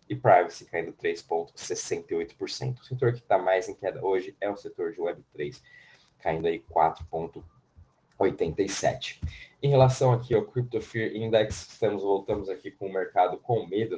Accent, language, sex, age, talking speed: Brazilian, Portuguese, male, 20-39, 150 wpm